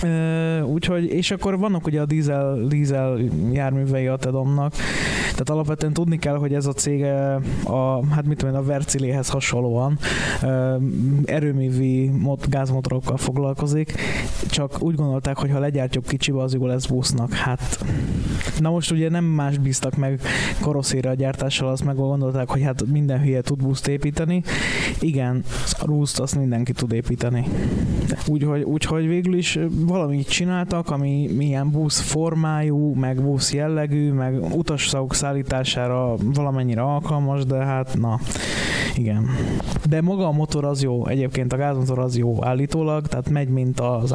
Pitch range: 130-150 Hz